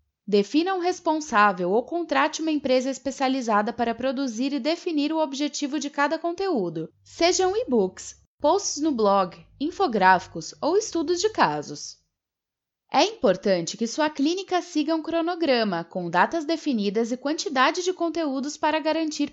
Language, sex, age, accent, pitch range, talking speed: Portuguese, female, 10-29, Brazilian, 220-320 Hz, 135 wpm